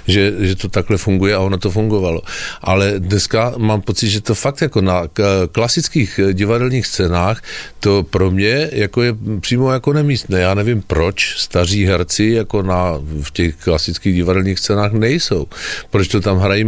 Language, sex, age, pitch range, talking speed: Slovak, male, 50-69, 90-105 Hz, 170 wpm